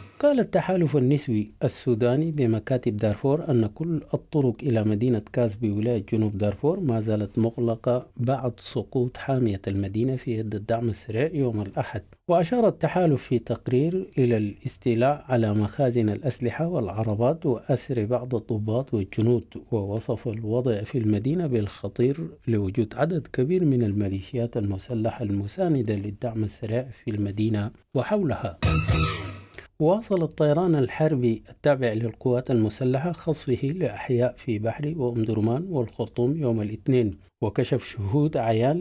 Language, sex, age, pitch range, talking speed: English, male, 50-69, 110-140 Hz, 120 wpm